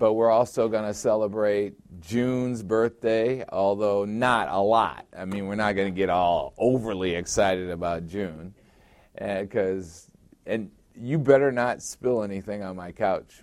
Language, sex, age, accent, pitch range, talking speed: English, male, 50-69, American, 95-115 Hz, 155 wpm